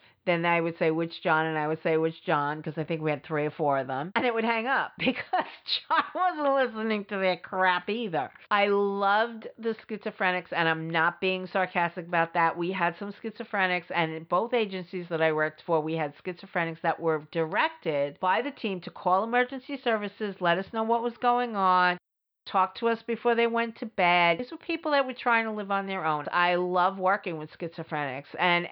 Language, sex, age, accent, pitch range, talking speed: English, female, 50-69, American, 165-215 Hz, 215 wpm